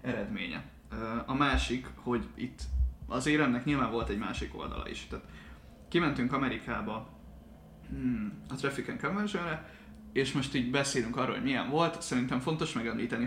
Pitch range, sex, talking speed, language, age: 115-145 Hz, male, 140 wpm, Hungarian, 20-39